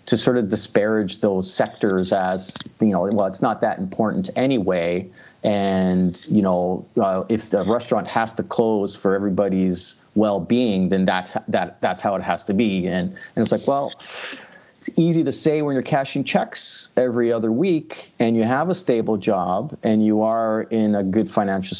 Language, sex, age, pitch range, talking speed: English, male, 30-49, 100-120 Hz, 180 wpm